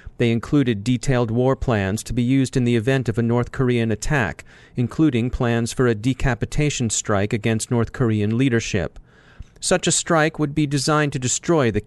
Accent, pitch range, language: American, 115-140 Hz, English